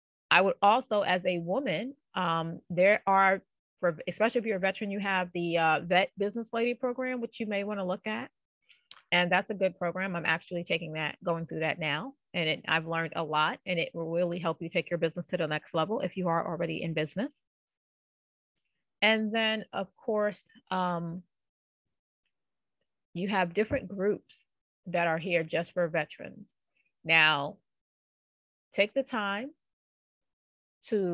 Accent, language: American, English